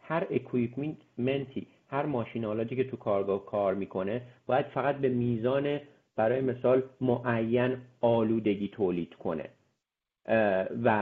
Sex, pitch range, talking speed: male, 110-135 Hz, 110 wpm